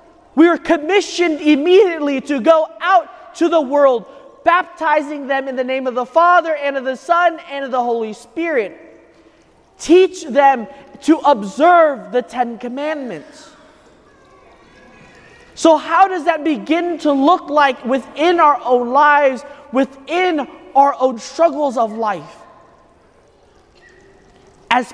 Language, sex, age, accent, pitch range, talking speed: English, male, 30-49, American, 270-330 Hz, 130 wpm